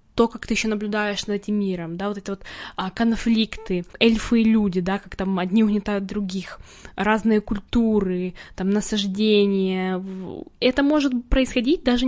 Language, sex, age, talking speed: Ukrainian, female, 10-29, 150 wpm